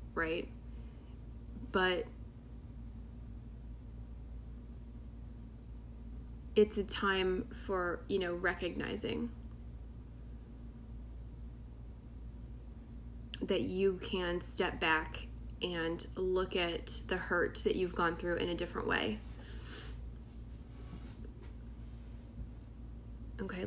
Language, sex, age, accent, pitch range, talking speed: English, female, 20-39, American, 115-185 Hz, 70 wpm